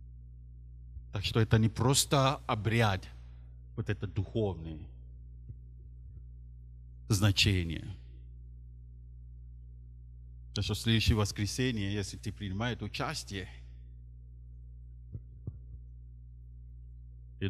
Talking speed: 65 wpm